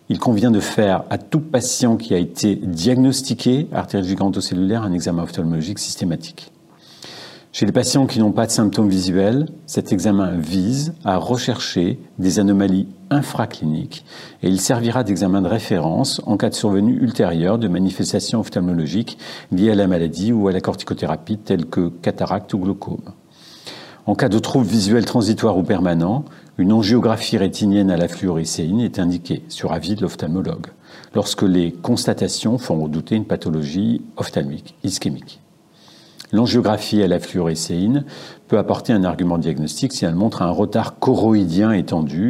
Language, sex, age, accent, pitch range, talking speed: French, male, 50-69, French, 90-115 Hz, 150 wpm